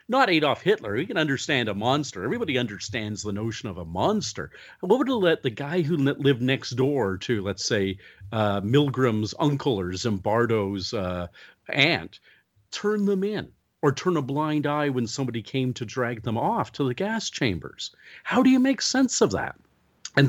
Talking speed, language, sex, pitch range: 185 wpm, English, male, 110-150 Hz